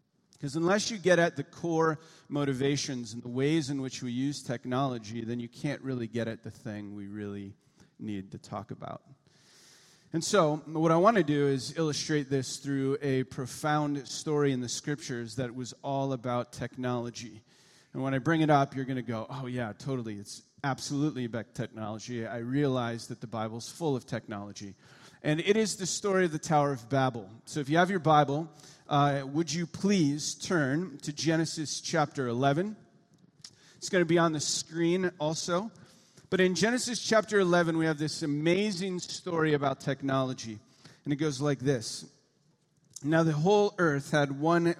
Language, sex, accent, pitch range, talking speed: English, male, American, 125-160 Hz, 180 wpm